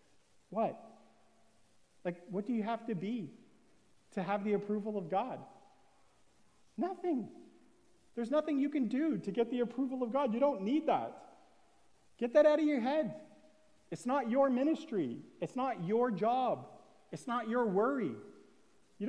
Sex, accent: male, American